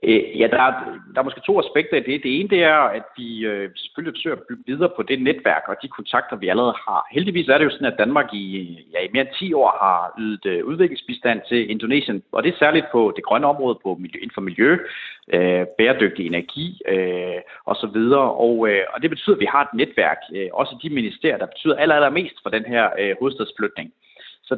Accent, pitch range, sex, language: native, 110-165 Hz, male, Danish